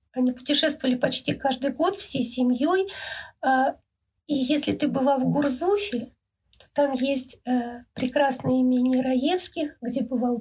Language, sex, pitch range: Russian, female, 250-295 Hz